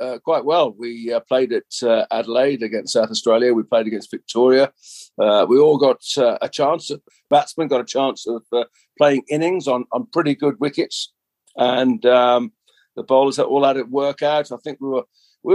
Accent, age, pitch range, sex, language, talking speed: British, 50-69, 125-155 Hz, male, English, 190 wpm